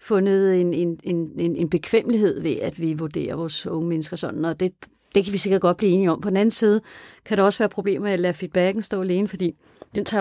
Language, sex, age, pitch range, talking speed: Danish, female, 40-59, 180-220 Hz, 255 wpm